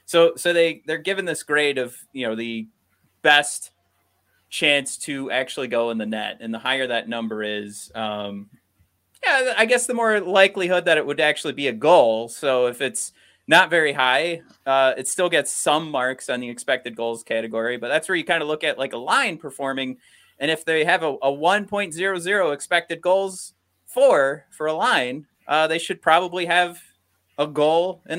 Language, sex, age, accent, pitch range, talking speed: English, male, 30-49, American, 115-165 Hz, 190 wpm